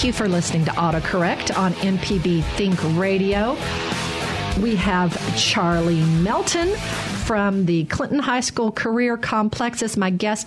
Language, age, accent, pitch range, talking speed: English, 50-69, American, 180-240 Hz, 140 wpm